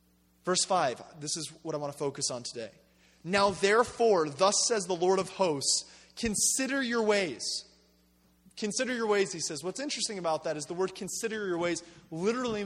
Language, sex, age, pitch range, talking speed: English, male, 30-49, 155-235 Hz, 180 wpm